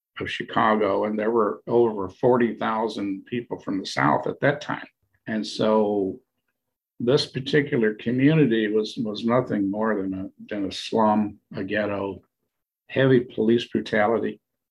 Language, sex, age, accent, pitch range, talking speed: English, male, 50-69, American, 105-130 Hz, 135 wpm